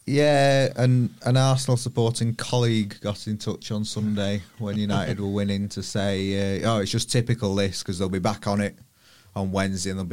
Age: 20-39